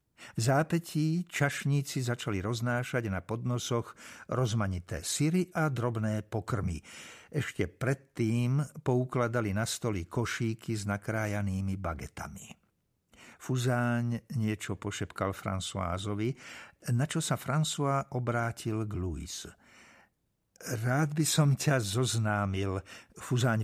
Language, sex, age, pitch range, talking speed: Slovak, male, 60-79, 110-145 Hz, 95 wpm